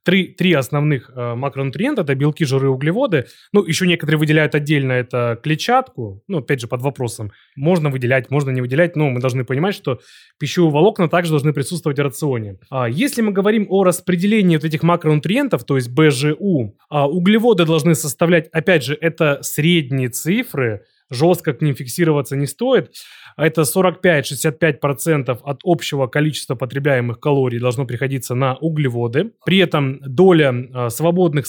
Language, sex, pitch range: Russian, male, 130-165 Hz